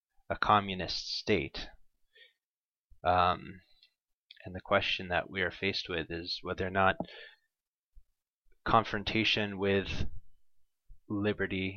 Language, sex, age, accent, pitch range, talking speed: English, male, 20-39, American, 90-105 Hz, 95 wpm